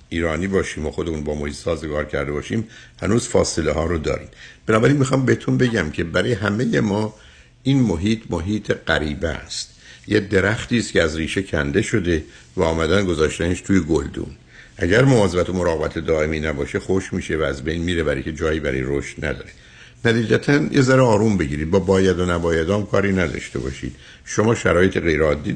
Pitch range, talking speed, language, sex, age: 80-110 Hz, 170 wpm, Persian, male, 60-79